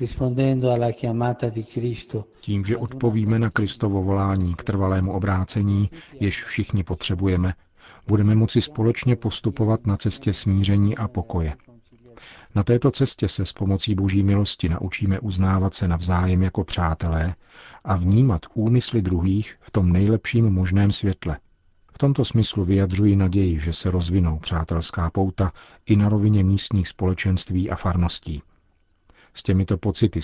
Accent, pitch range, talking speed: native, 90-110 Hz, 125 wpm